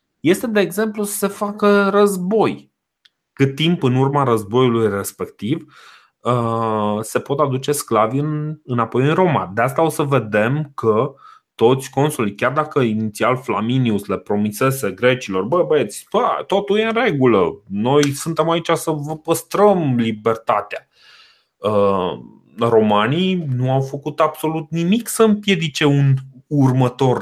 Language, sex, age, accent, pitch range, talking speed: Romanian, male, 30-49, native, 110-155 Hz, 130 wpm